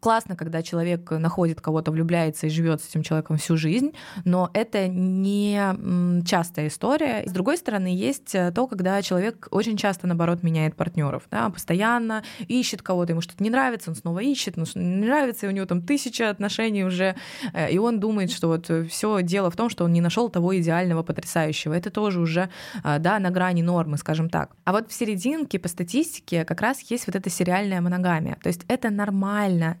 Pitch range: 170-205 Hz